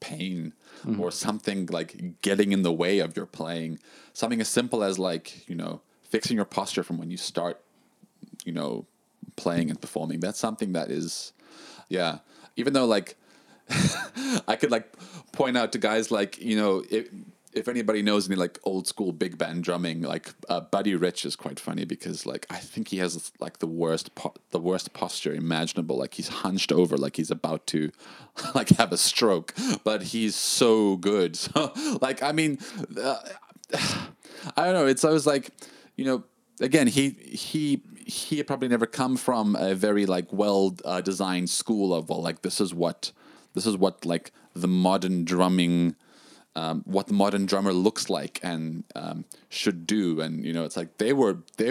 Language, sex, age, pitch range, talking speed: English, male, 30-49, 85-110 Hz, 180 wpm